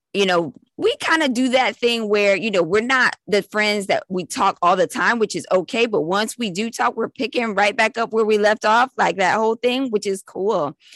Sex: female